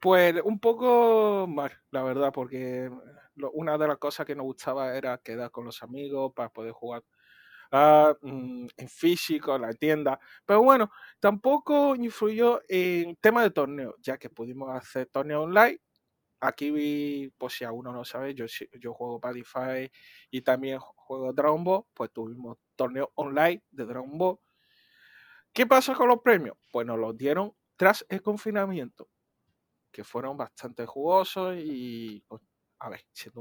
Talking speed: 155 wpm